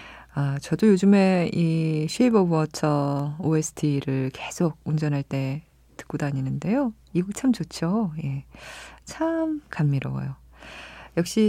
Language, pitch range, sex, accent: Korean, 140-195 Hz, female, native